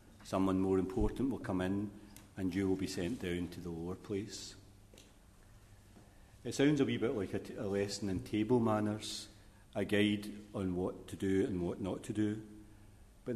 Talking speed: 180 wpm